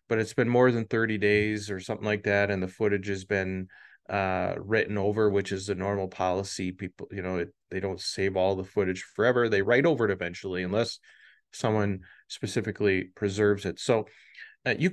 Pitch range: 95-115 Hz